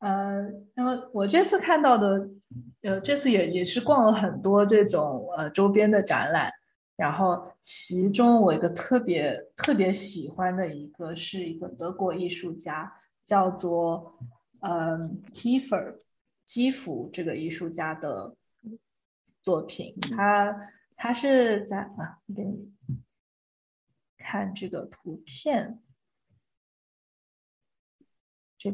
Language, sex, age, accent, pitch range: Chinese, female, 20-39, native, 175-215 Hz